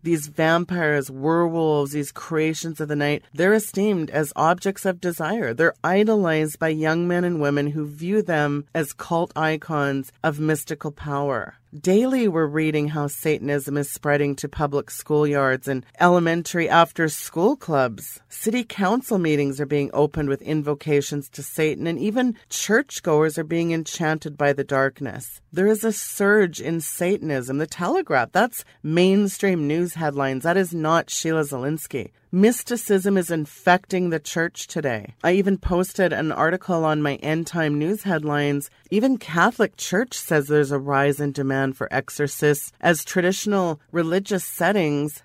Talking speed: 150 wpm